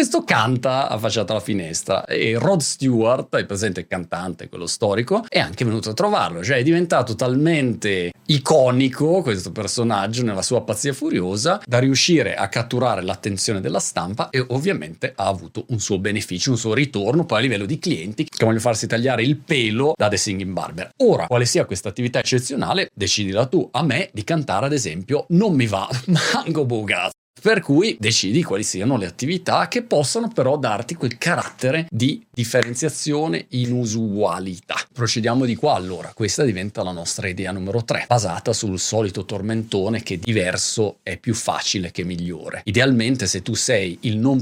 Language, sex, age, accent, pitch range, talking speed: Italian, male, 40-59, native, 100-145 Hz, 170 wpm